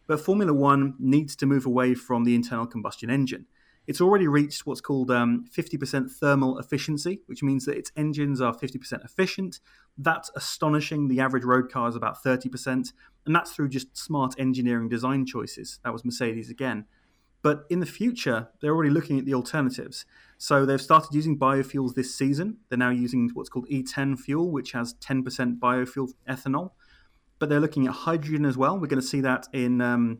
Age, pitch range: 30-49, 125-150 Hz